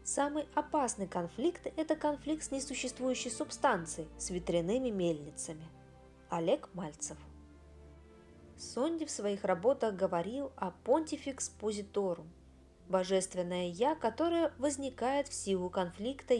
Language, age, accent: Russian, 20-39, native